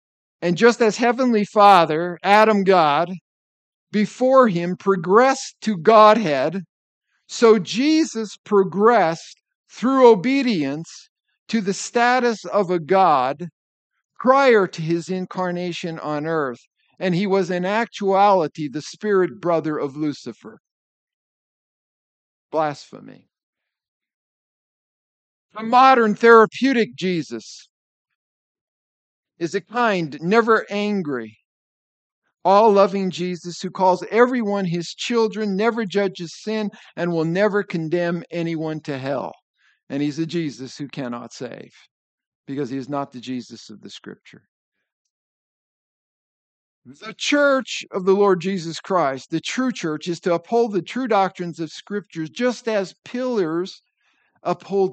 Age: 50-69